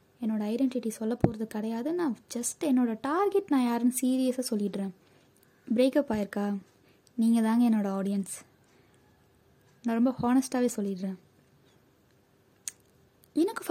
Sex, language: female, Tamil